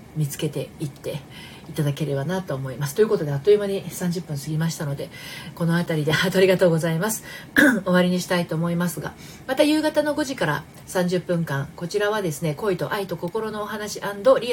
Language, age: Japanese, 40-59